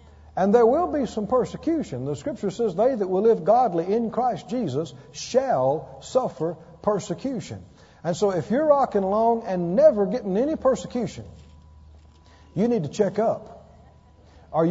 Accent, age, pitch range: American, 50-69, 150-230 Hz